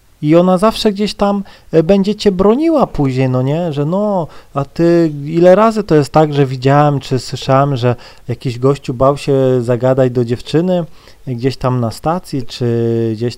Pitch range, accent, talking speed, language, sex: 120-170 Hz, native, 170 wpm, Polish, male